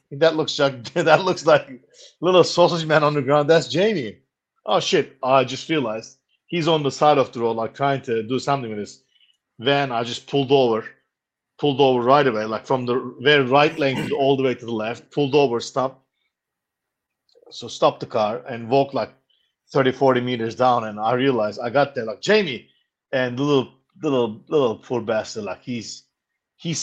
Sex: male